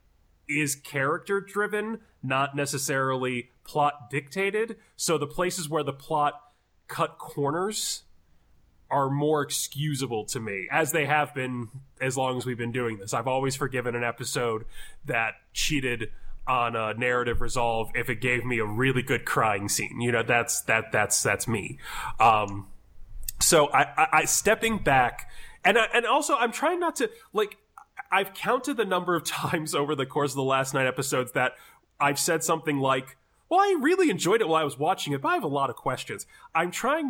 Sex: male